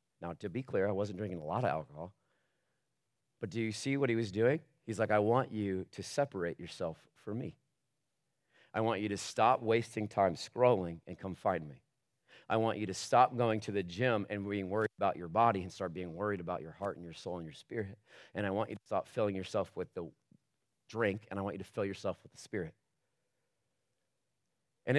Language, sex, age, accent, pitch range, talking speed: English, male, 40-59, American, 100-130 Hz, 220 wpm